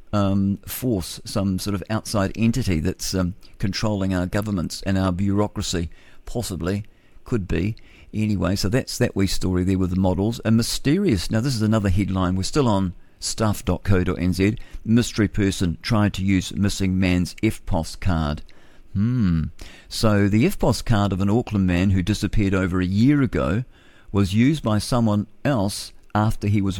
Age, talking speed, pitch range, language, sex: 50-69, 160 wpm, 95-110 Hz, English, male